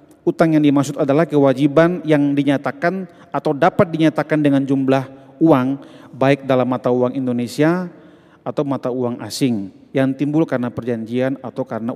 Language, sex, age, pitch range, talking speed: Indonesian, male, 40-59, 125-160 Hz, 140 wpm